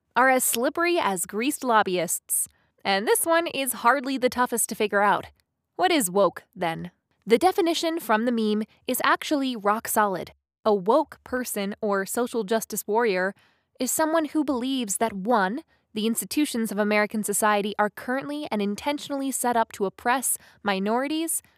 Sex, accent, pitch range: female, American, 205-260 Hz